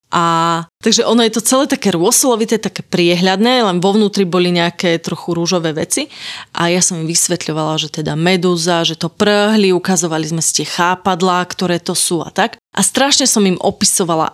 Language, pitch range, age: Slovak, 170-205 Hz, 30-49